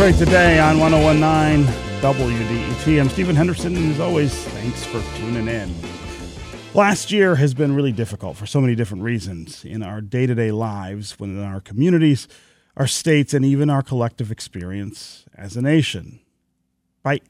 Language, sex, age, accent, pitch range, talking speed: English, male, 40-59, American, 110-155 Hz, 160 wpm